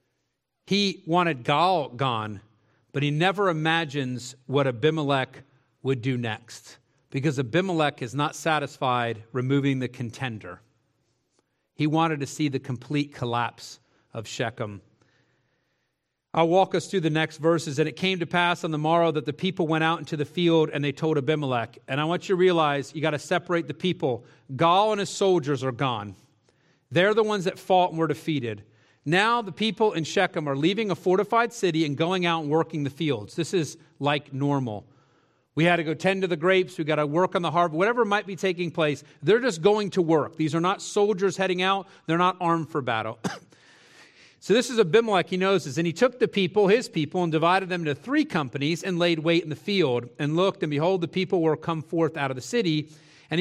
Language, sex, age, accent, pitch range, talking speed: English, male, 40-59, American, 140-180 Hz, 200 wpm